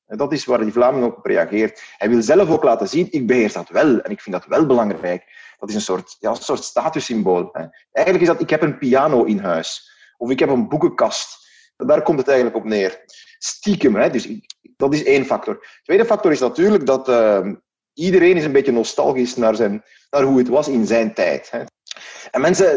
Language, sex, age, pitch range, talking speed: Dutch, male, 30-49, 120-195 Hz, 215 wpm